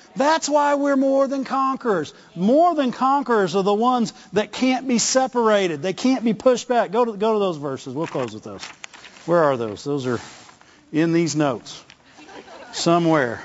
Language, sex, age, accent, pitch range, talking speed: English, male, 50-69, American, 130-215 Hz, 175 wpm